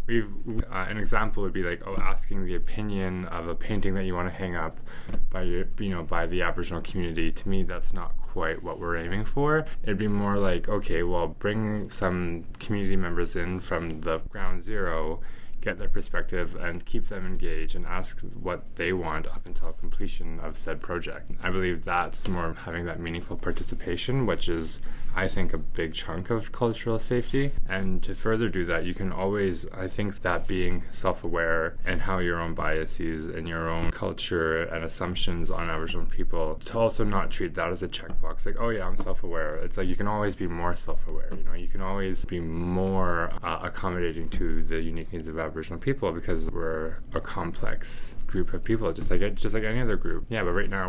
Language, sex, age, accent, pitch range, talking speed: English, male, 20-39, American, 85-100 Hz, 200 wpm